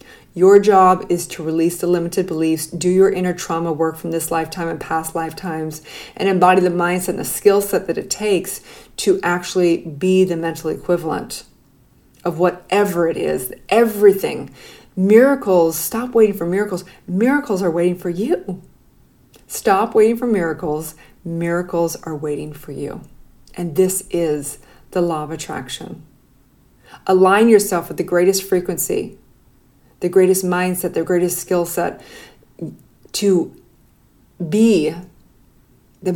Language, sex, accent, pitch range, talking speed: English, female, American, 170-200 Hz, 140 wpm